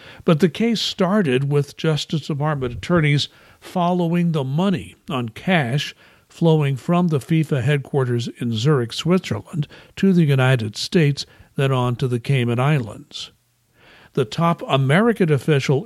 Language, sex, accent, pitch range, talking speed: English, male, American, 125-165 Hz, 130 wpm